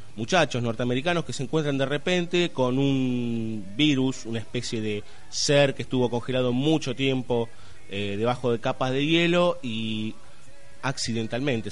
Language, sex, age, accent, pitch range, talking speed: Spanish, male, 30-49, Argentinian, 110-145 Hz, 140 wpm